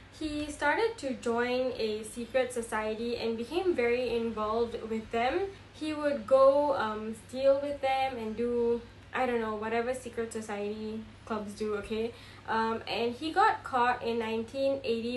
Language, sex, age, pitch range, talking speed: English, female, 10-29, 225-260 Hz, 150 wpm